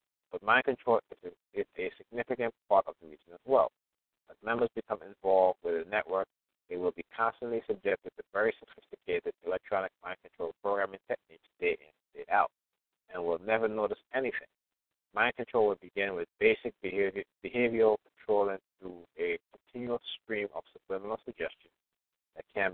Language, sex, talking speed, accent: English, male, 165 wpm, American